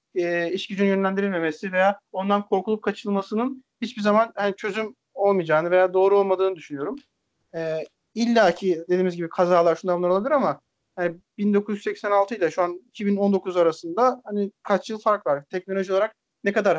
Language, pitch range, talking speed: Turkish, 180-210 Hz, 145 wpm